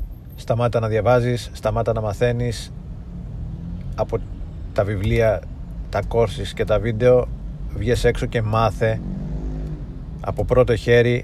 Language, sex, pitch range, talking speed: Greek, male, 90-115 Hz, 110 wpm